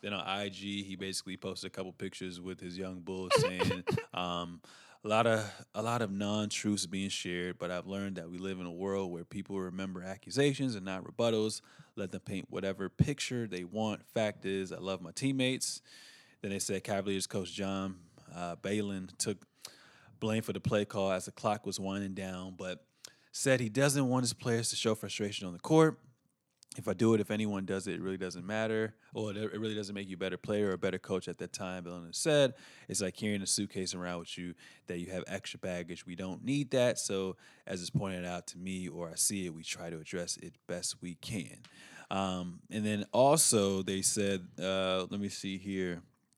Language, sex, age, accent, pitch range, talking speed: English, male, 20-39, American, 95-110 Hz, 210 wpm